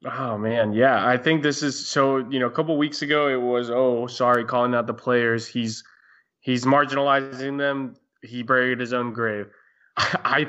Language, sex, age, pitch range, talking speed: English, male, 20-39, 115-135 Hz, 190 wpm